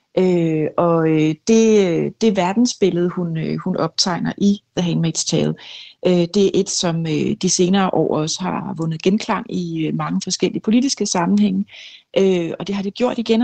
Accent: native